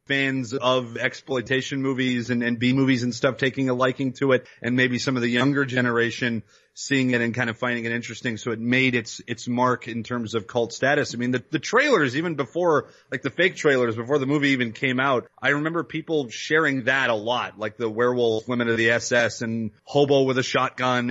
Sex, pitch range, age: male, 120-145 Hz, 30-49